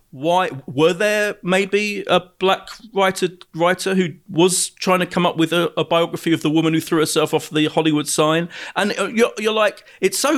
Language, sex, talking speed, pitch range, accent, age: English, male, 195 wpm, 145-185 Hz, British, 40-59